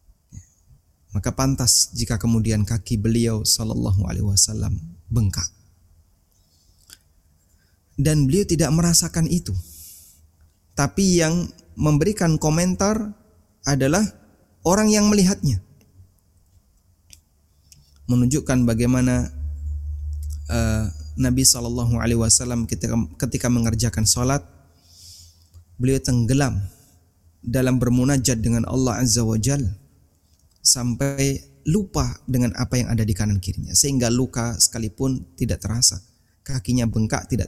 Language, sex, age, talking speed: Indonesian, male, 20-39, 95 wpm